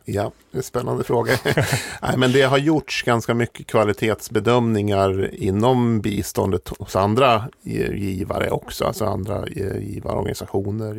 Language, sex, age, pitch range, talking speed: Swedish, male, 40-59, 95-115 Hz, 125 wpm